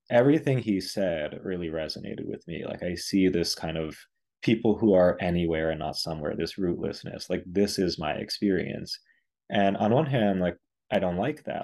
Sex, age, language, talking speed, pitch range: male, 30-49, English, 185 wpm, 85-105 Hz